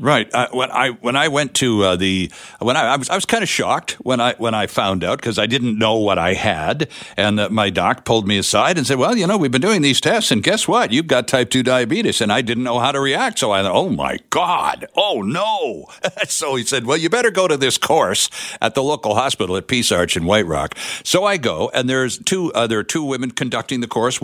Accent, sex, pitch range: American, male, 110-160 Hz